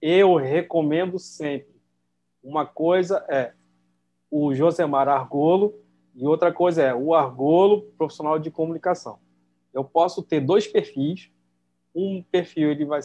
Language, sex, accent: Portuguese, male, Brazilian